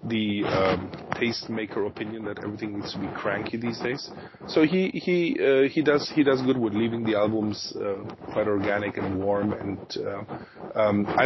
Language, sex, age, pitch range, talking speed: English, male, 30-49, 105-120 Hz, 180 wpm